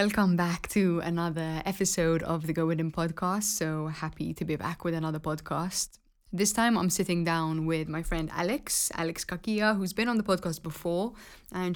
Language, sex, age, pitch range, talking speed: English, female, 20-39, 155-175 Hz, 185 wpm